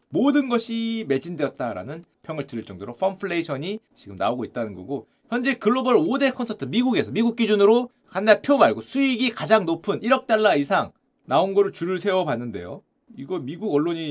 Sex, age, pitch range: male, 30-49, 155-230 Hz